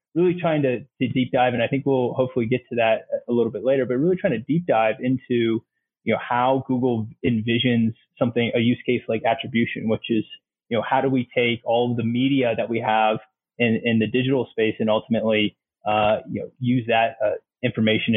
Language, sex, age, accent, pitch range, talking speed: English, male, 20-39, American, 110-130 Hz, 215 wpm